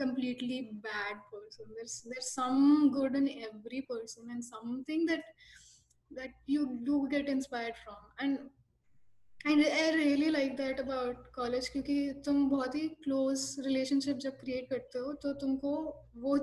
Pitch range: 245-280 Hz